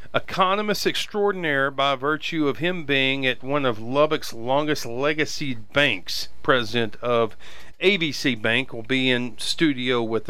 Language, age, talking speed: English, 40-59, 135 wpm